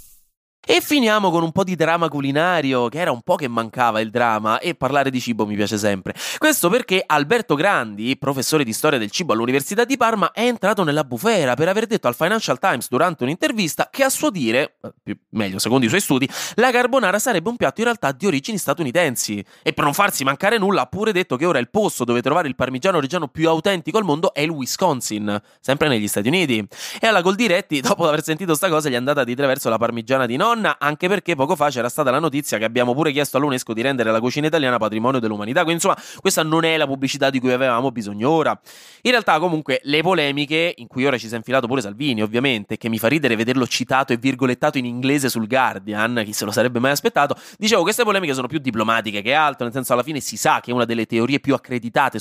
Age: 20-39